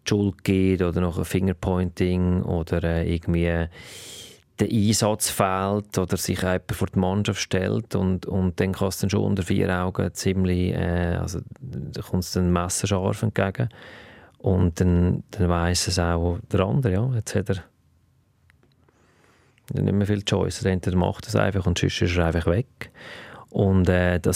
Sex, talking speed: male, 160 wpm